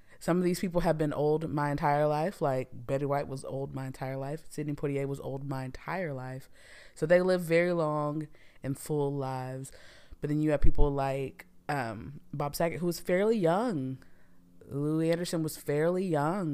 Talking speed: 185 wpm